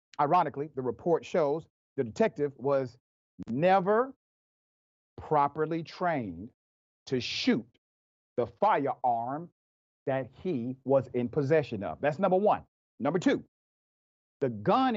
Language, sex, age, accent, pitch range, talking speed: English, male, 40-59, American, 115-160 Hz, 110 wpm